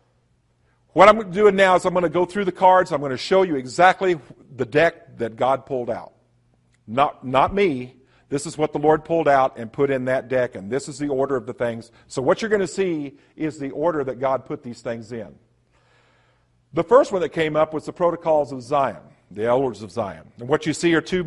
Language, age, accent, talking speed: English, 50-69, American, 235 wpm